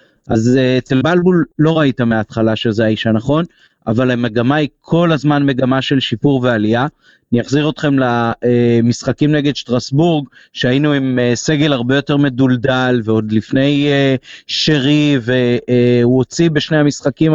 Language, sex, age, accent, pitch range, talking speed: Hebrew, male, 30-49, native, 125-145 Hz, 130 wpm